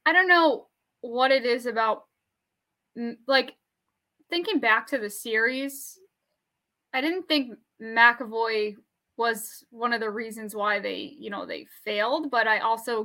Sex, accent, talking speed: female, American, 145 wpm